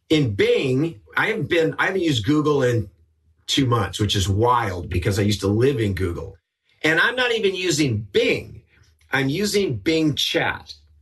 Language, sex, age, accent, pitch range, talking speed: English, male, 40-59, American, 105-155 Hz, 165 wpm